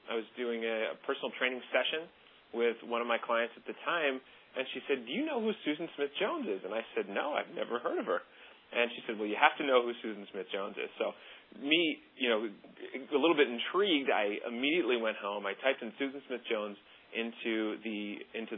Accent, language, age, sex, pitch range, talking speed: American, English, 30-49, male, 105-130 Hz, 225 wpm